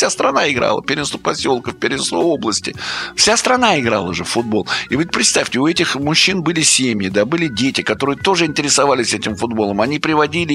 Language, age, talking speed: Russian, 50-69, 175 wpm